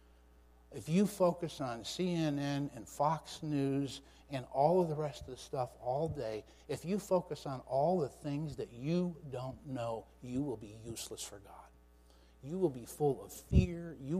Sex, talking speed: male, 180 wpm